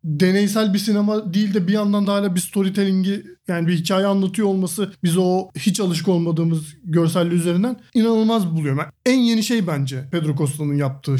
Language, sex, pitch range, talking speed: Turkish, male, 170-205 Hz, 170 wpm